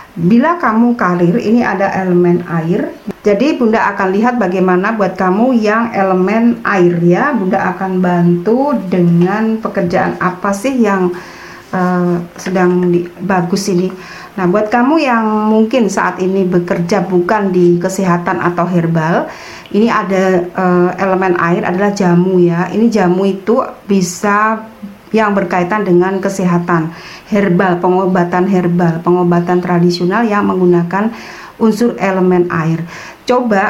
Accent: native